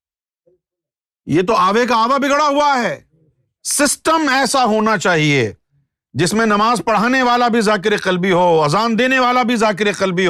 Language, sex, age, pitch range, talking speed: Urdu, male, 50-69, 155-210 Hz, 155 wpm